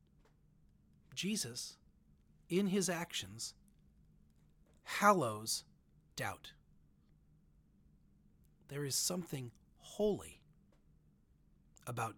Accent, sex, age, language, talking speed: American, male, 40-59, English, 55 wpm